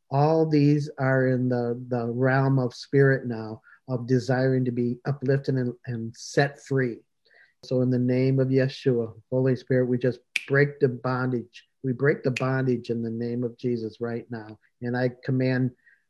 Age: 50-69